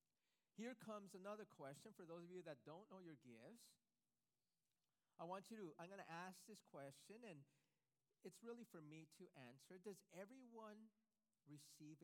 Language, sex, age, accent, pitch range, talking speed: English, male, 40-59, American, 155-205 Hz, 165 wpm